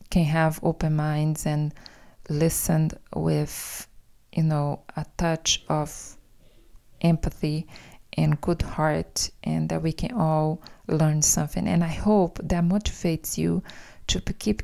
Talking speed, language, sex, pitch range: 125 wpm, English, female, 155-195 Hz